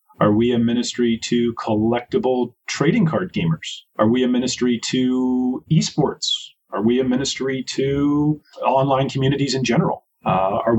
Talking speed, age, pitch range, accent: 145 wpm, 30-49, 110-140 Hz, American